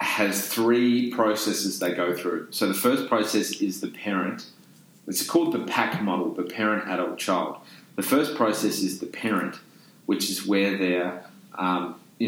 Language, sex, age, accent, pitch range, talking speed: English, male, 30-49, Australian, 90-110 Hz, 155 wpm